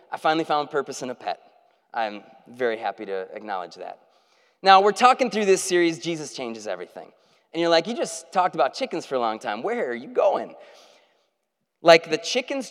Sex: male